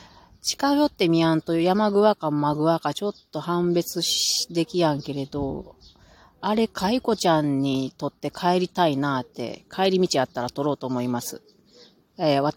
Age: 30-49